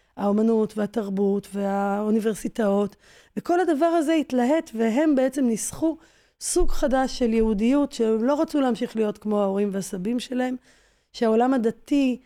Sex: female